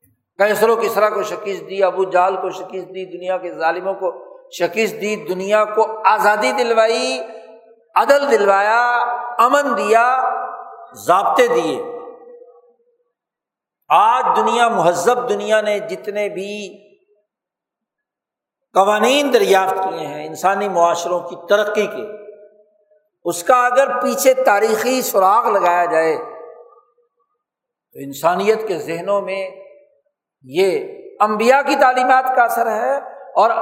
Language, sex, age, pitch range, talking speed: Urdu, male, 60-79, 195-280 Hz, 115 wpm